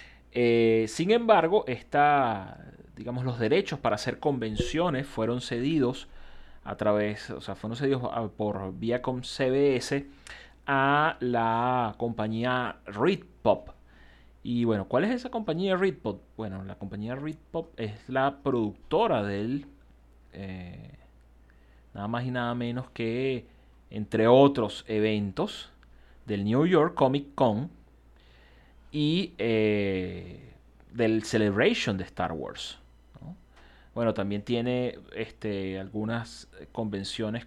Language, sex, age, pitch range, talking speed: Spanish, male, 30-49, 95-130 Hz, 110 wpm